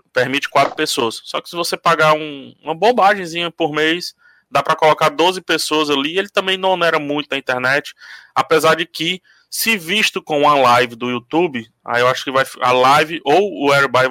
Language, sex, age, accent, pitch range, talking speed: Portuguese, male, 20-39, Brazilian, 135-190 Hz, 195 wpm